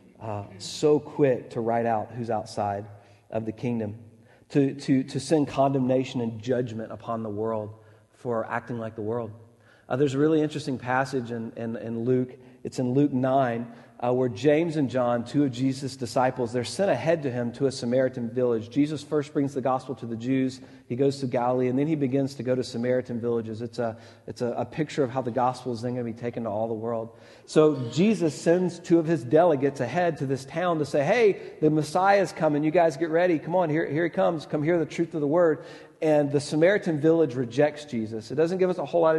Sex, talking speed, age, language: male, 225 wpm, 40-59, English